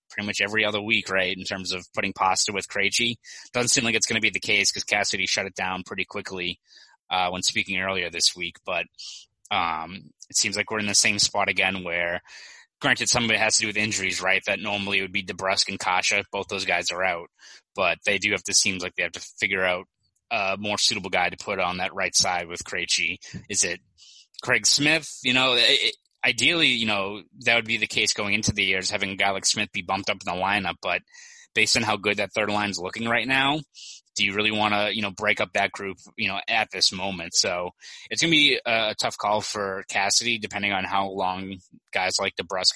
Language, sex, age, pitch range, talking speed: English, male, 20-39, 95-110 Hz, 235 wpm